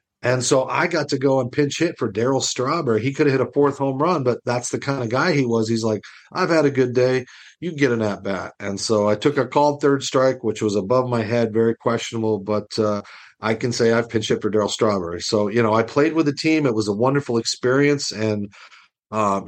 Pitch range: 105-130 Hz